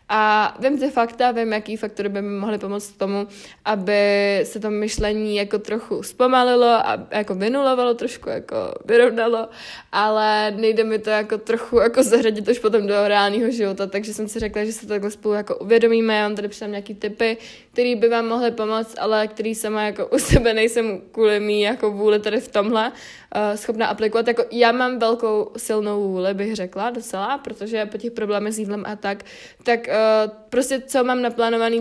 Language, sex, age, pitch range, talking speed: Czech, female, 20-39, 210-235 Hz, 190 wpm